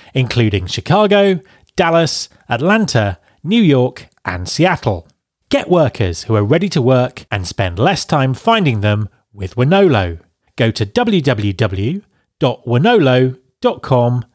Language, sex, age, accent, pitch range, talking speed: English, male, 30-49, British, 100-135 Hz, 110 wpm